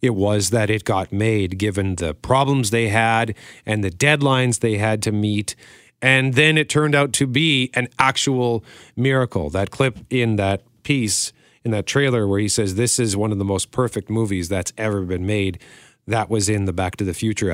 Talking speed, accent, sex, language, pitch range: 200 wpm, American, male, English, 100-145 Hz